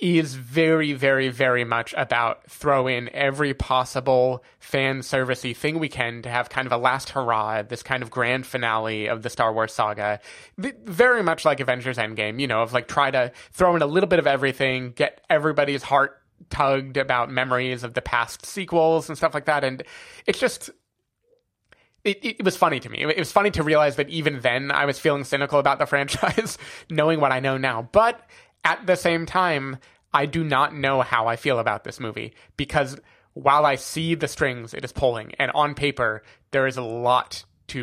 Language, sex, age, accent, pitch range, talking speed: English, male, 20-39, American, 130-155 Hz, 195 wpm